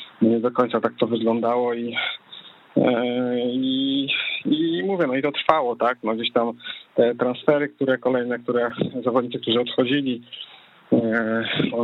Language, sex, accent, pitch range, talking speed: Polish, male, native, 120-135 Hz, 145 wpm